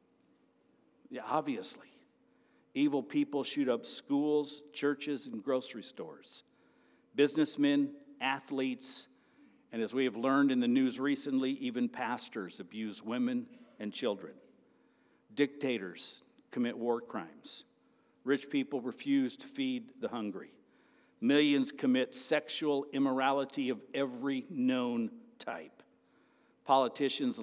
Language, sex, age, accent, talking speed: English, male, 60-79, American, 105 wpm